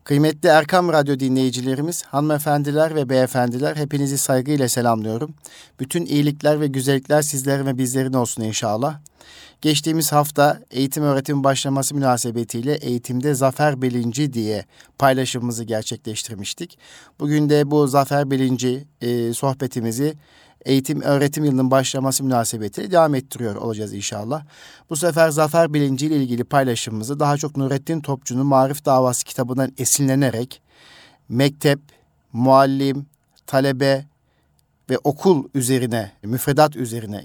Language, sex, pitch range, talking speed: Turkish, male, 125-150 Hz, 115 wpm